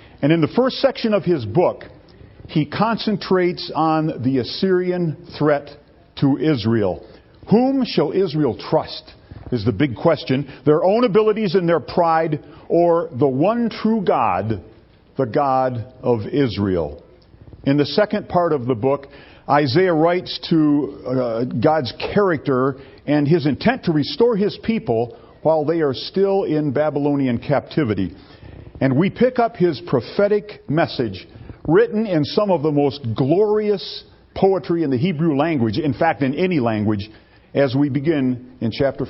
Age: 50-69